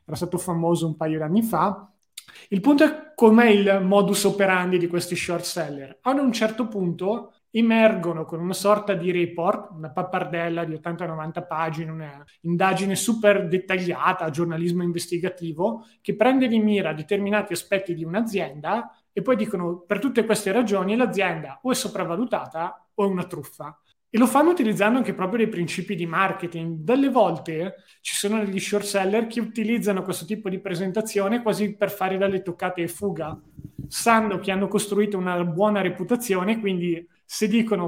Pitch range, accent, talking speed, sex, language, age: 175-215 Hz, native, 160 wpm, male, Italian, 30-49